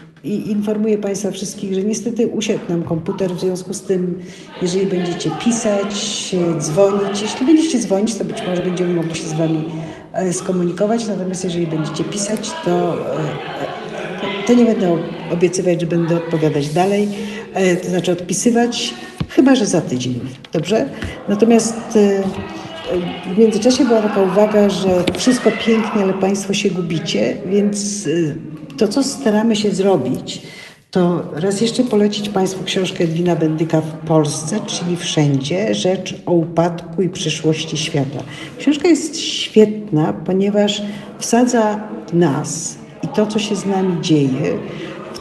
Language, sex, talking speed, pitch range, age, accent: Polish, female, 135 wpm, 170-210 Hz, 50-69, native